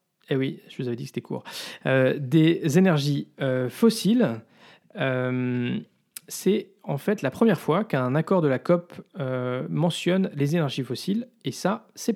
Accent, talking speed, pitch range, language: French, 170 wpm, 130-175 Hz, French